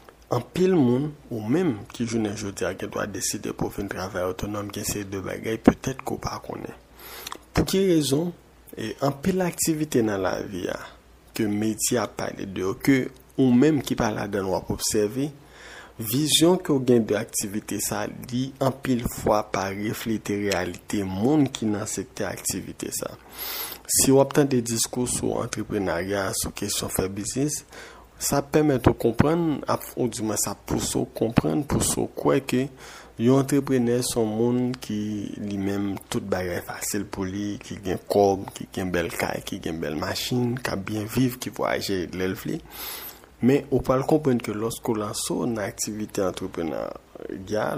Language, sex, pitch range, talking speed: French, male, 105-135 Hz, 170 wpm